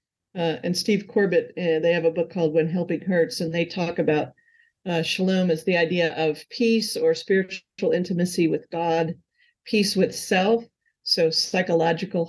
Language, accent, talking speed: English, American, 165 wpm